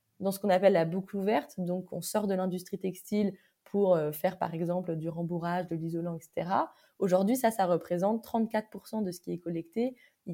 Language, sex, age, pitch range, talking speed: French, female, 20-39, 175-215 Hz, 190 wpm